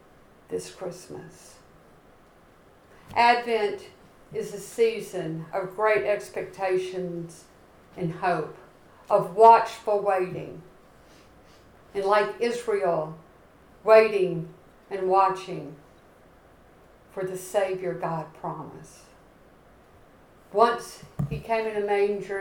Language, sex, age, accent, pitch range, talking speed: English, female, 60-79, American, 170-205 Hz, 85 wpm